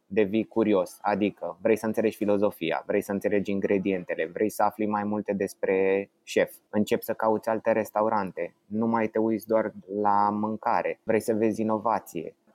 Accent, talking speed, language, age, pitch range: native, 165 wpm, Romanian, 20-39, 110-130 Hz